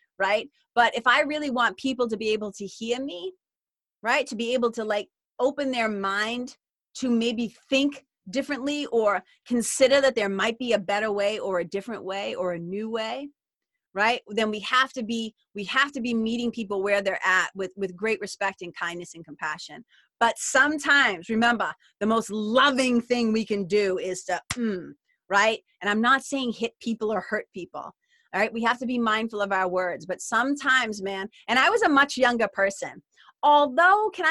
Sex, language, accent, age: female, English, American, 30-49